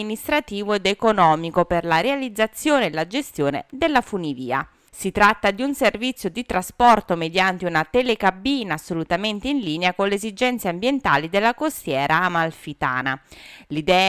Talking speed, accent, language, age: 140 wpm, native, Italian, 30-49